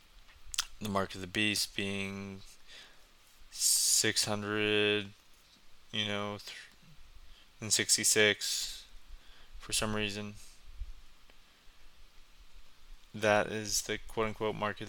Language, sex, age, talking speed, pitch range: English, male, 20-39, 85 wpm, 100-110 Hz